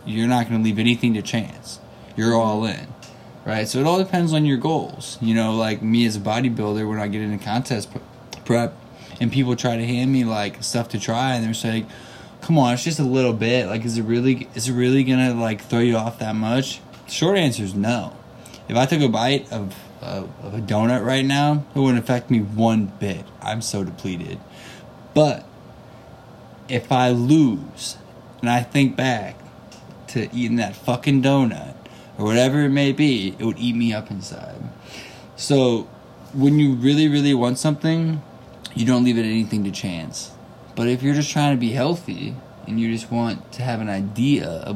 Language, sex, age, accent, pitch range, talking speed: English, male, 20-39, American, 110-130 Hz, 195 wpm